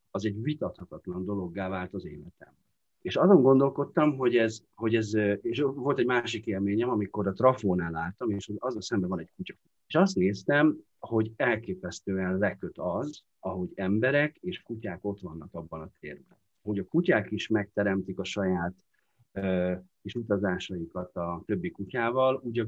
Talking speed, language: 160 wpm, Hungarian